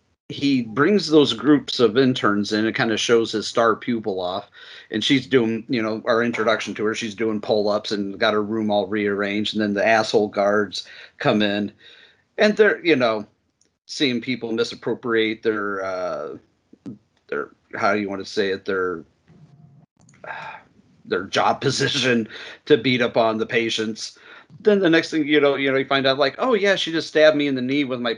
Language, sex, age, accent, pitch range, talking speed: English, male, 40-59, American, 110-150 Hz, 190 wpm